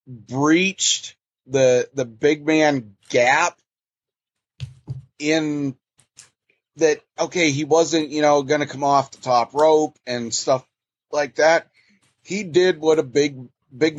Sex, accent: male, American